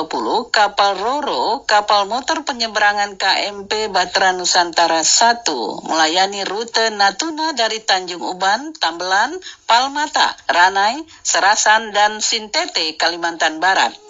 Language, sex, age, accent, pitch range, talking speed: Indonesian, female, 50-69, native, 180-230 Hz, 100 wpm